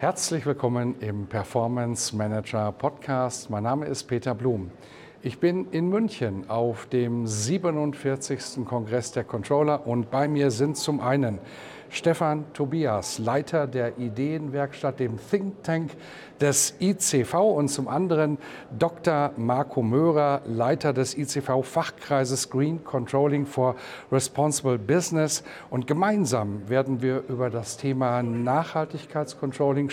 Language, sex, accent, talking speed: German, male, German, 115 wpm